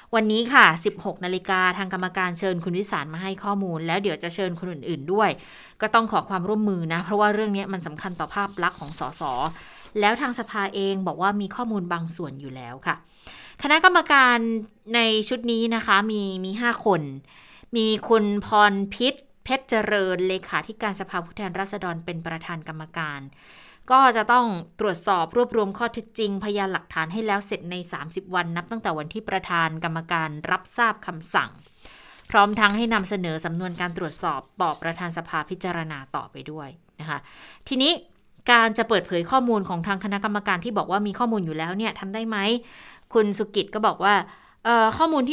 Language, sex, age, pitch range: Thai, female, 20-39, 175-220 Hz